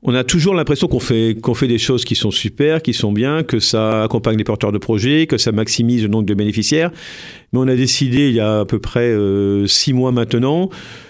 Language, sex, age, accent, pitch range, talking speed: French, male, 50-69, French, 115-145 Hz, 240 wpm